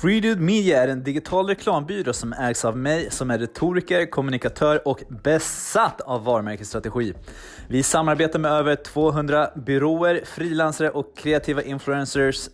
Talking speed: 135 wpm